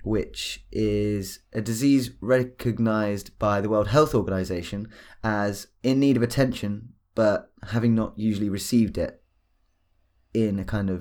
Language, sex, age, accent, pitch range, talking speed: English, male, 20-39, British, 95-115 Hz, 135 wpm